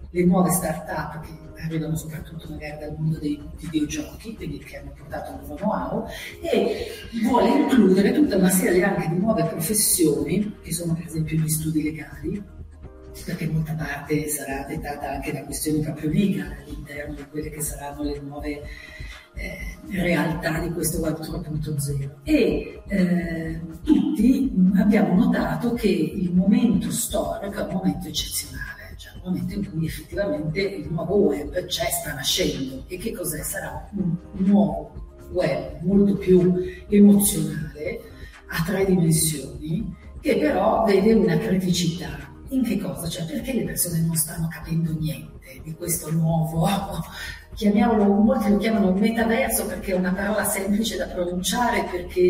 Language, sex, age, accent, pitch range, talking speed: Italian, female, 40-59, native, 155-200 Hz, 145 wpm